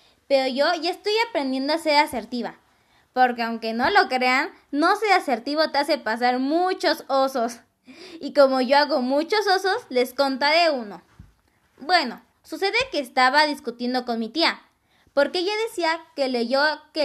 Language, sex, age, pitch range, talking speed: Spanish, female, 10-29, 255-335 Hz, 155 wpm